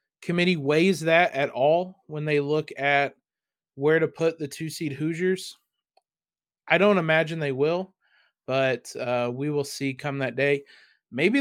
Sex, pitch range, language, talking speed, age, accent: male, 145-175 Hz, English, 155 wpm, 20-39, American